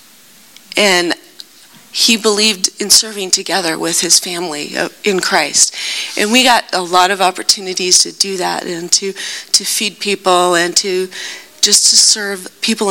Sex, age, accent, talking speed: female, 40-59, American, 150 wpm